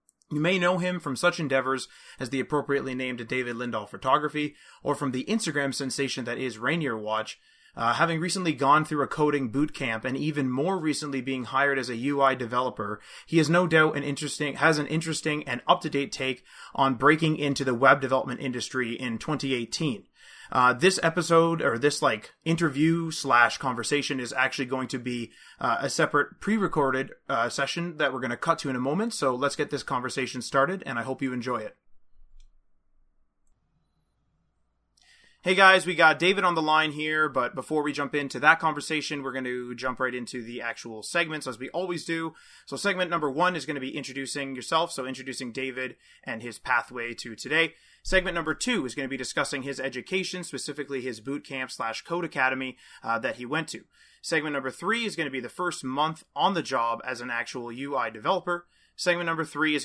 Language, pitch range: English, 130-160 Hz